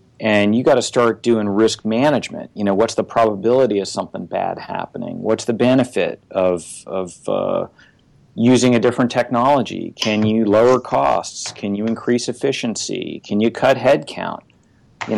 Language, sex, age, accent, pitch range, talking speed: English, male, 40-59, American, 110-130 Hz, 160 wpm